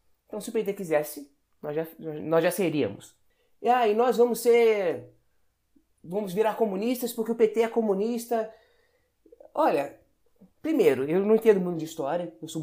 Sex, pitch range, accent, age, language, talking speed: male, 160-240 Hz, Brazilian, 20-39, Portuguese, 155 wpm